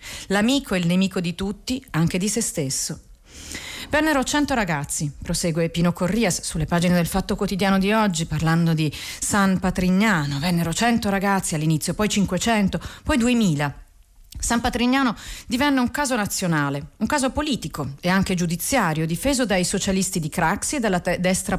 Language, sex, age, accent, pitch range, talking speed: Italian, female, 40-59, native, 165-220 Hz, 155 wpm